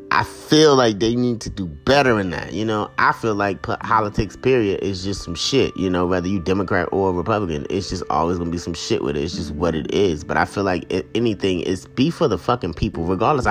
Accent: American